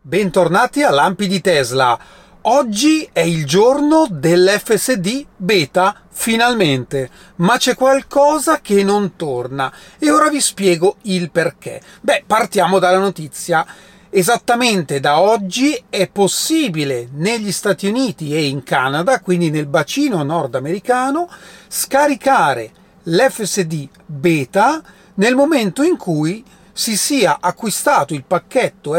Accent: native